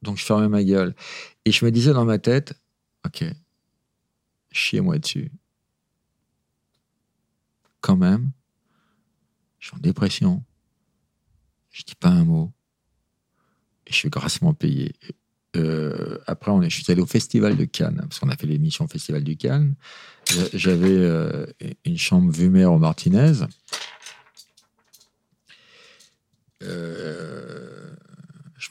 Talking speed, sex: 125 wpm, male